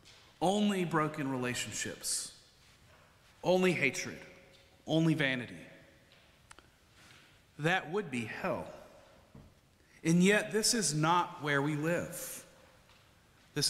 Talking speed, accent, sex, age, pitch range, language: 90 wpm, American, male, 40-59, 125-155 Hz, English